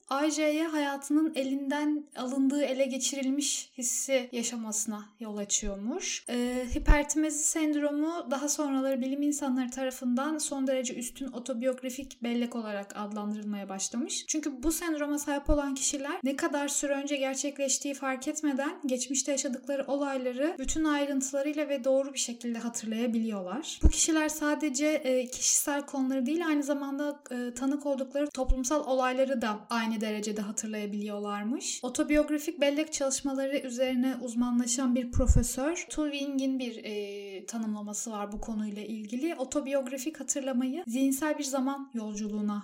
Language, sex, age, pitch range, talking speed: Turkish, female, 10-29, 240-285 Hz, 125 wpm